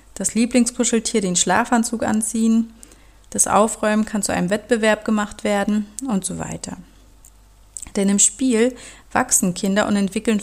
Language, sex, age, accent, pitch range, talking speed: German, female, 30-49, German, 190-230 Hz, 130 wpm